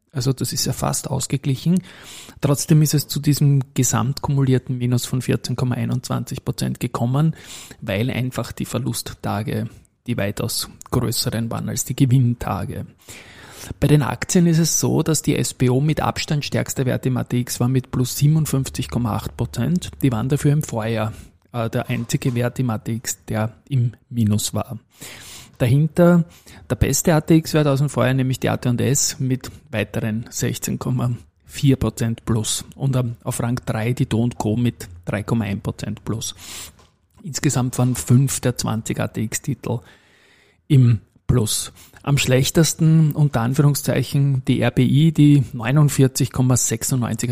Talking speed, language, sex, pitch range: 130 wpm, German, male, 115-140 Hz